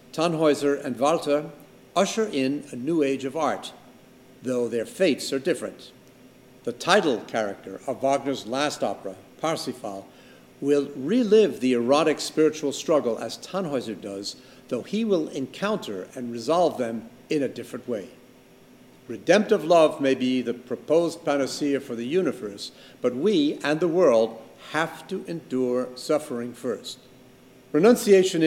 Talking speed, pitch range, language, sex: 135 wpm, 125-160 Hz, English, male